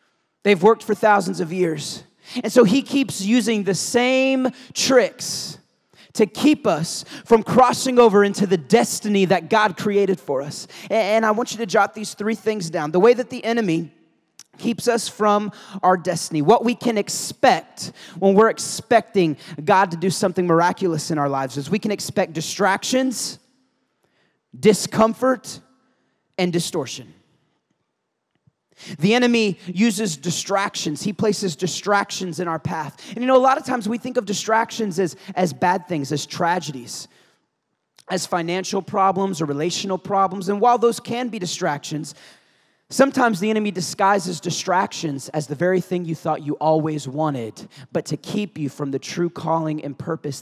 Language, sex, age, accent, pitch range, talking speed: English, male, 30-49, American, 165-220 Hz, 160 wpm